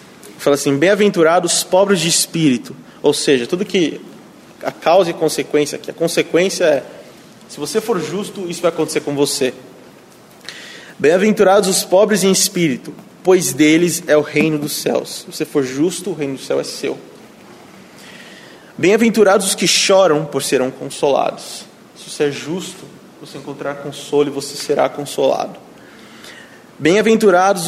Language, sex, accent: Portuguese, male, Brazilian